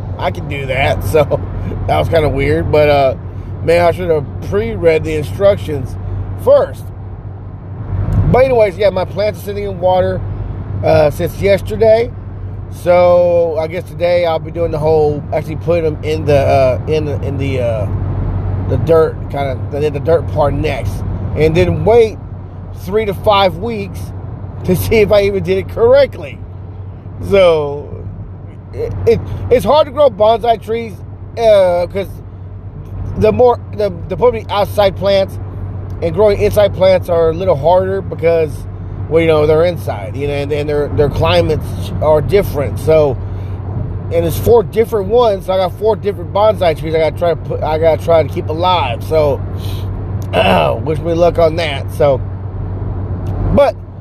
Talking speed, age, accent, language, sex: 170 wpm, 30-49, American, English, male